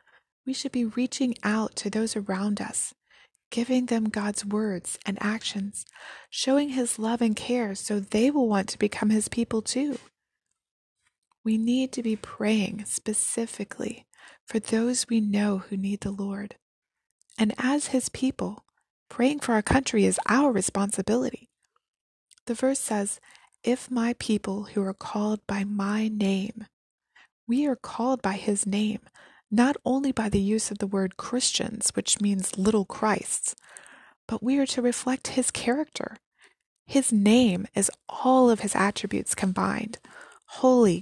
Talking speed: 150 wpm